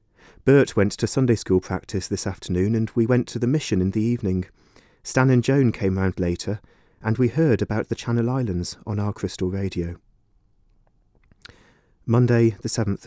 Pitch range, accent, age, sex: 95-115 Hz, British, 30-49, male